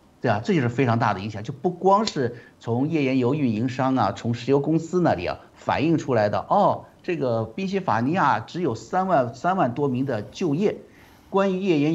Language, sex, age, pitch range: Chinese, male, 50-69, 115-150 Hz